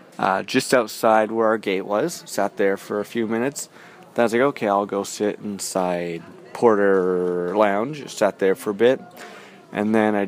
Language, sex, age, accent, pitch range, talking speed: English, male, 20-39, American, 100-115 Hz, 185 wpm